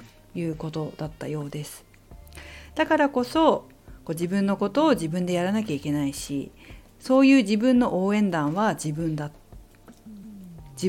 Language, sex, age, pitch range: Japanese, female, 50-69, 155-255 Hz